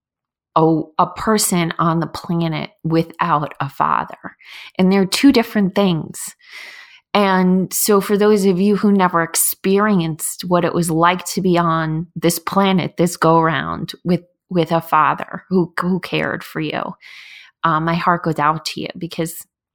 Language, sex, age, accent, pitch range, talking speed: English, female, 20-39, American, 160-190 Hz, 155 wpm